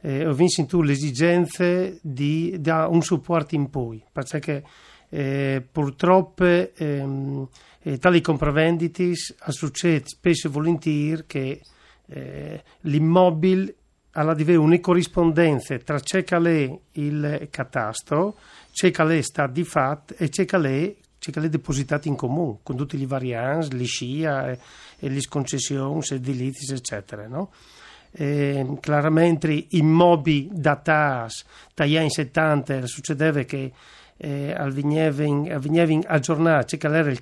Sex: male